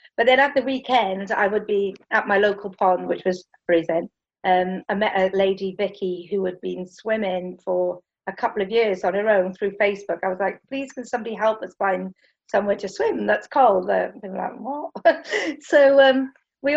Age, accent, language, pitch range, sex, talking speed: 40-59, British, English, 190-245 Hz, female, 205 wpm